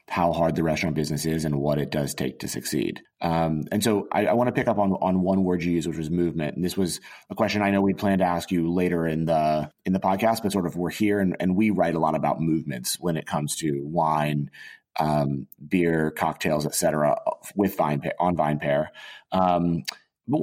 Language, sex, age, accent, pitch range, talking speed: English, male, 30-49, American, 75-95 Hz, 230 wpm